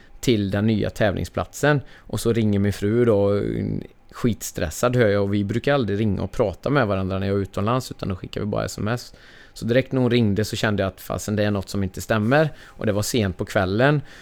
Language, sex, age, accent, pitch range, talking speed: Swedish, male, 20-39, native, 100-120 Hz, 230 wpm